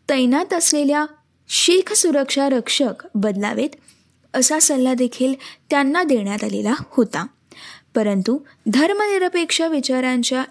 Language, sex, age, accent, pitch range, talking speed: Marathi, female, 20-39, native, 235-320 Hz, 90 wpm